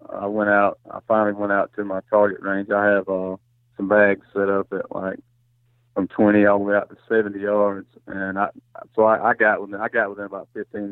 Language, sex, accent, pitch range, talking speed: English, male, American, 105-120 Hz, 225 wpm